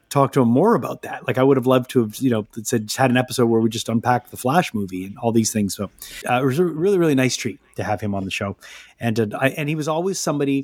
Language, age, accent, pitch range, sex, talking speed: English, 30-49, American, 115-150 Hz, male, 290 wpm